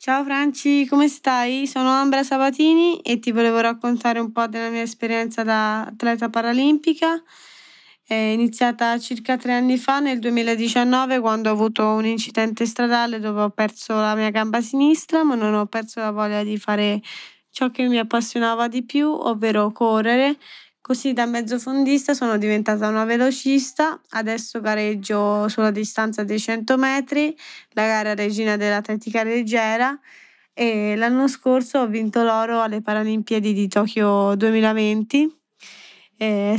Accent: native